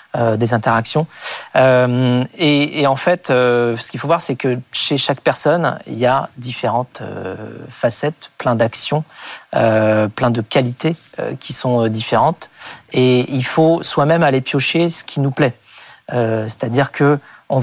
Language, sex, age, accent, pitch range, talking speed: French, male, 40-59, French, 125-150 Hz, 165 wpm